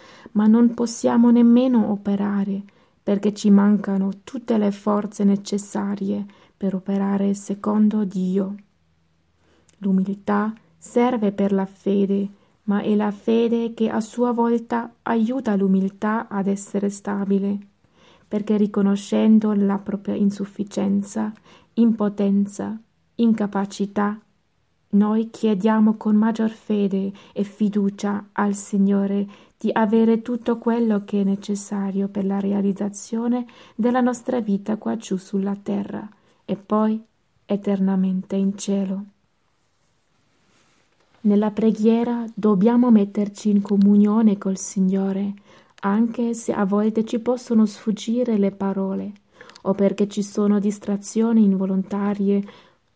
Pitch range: 200-220 Hz